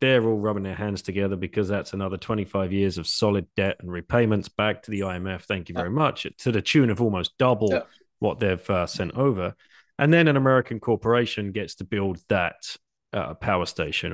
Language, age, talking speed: English, 30-49, 200 wpm